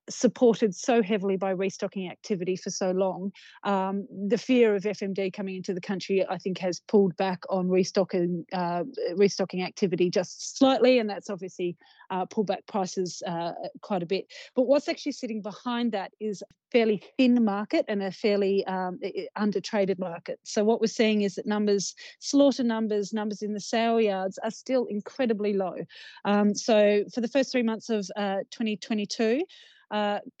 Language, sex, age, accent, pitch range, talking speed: English, female, 30-49, Australian, 190-220 Hz, 175 wpm